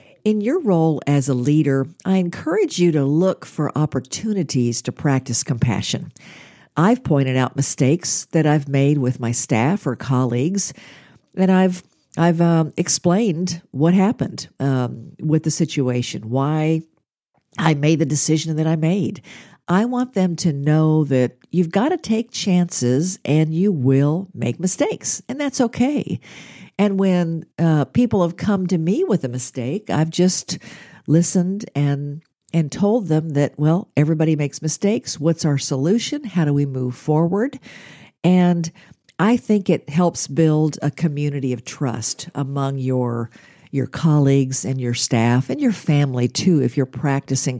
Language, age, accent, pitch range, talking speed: English, 50-69, American, 135-180 Hz, 155 wpm